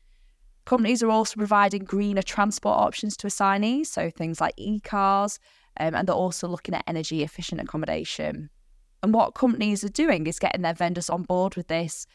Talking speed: 175 wpm